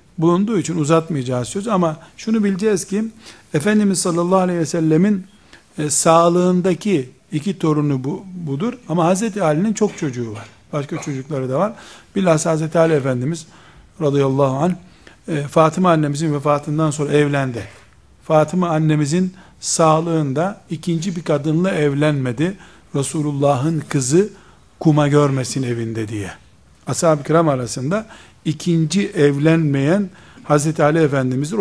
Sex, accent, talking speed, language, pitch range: male, native, 120 wpm, Turkish, 145-185 Hz